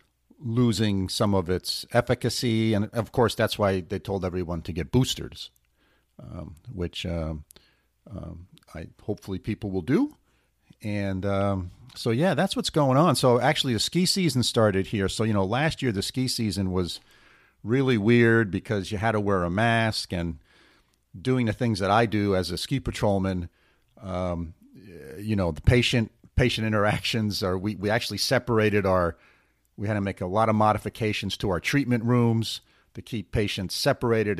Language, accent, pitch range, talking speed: English, American, 95-120 Hz, 170 wpm